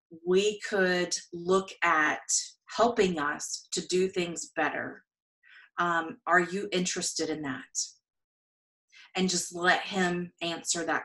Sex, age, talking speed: female, 30-49, 120 wpm